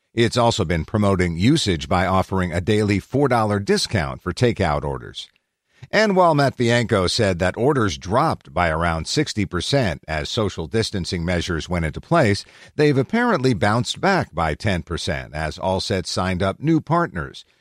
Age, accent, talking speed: 50-69, American, 150 wpm